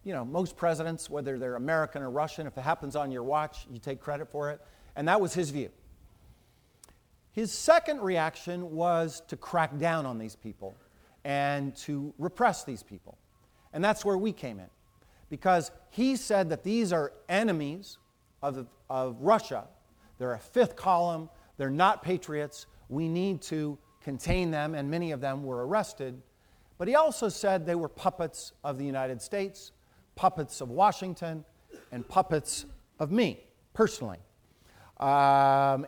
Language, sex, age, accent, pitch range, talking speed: English, male, 40-59, American, 135-180 Hz, 155 wpm